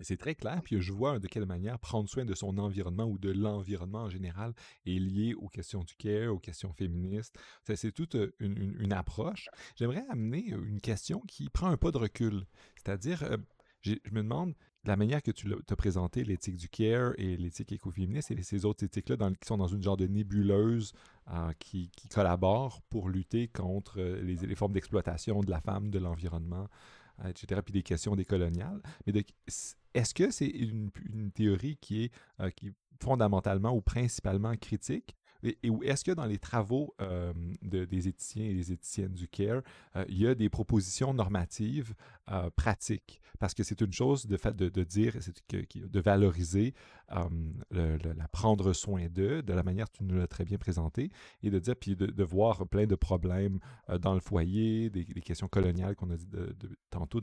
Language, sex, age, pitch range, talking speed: French, male, 30-49, 95-110 Hz, 200 wpm